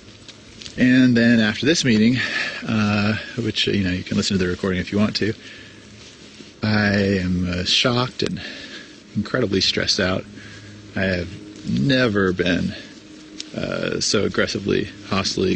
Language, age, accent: English, 30-49, American